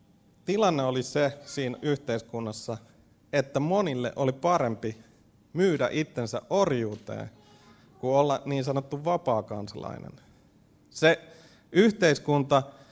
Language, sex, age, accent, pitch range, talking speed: Finnish, male, 30-49, native, 115-145 Hz, 90 wpm